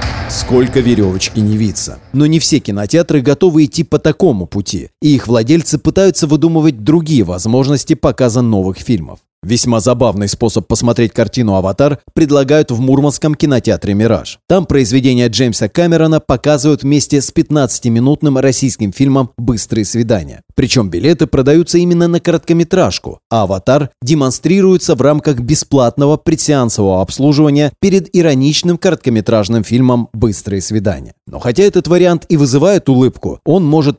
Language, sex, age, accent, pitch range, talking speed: Russian, male, 30-49, native, 115-150 Hz, 130 wpm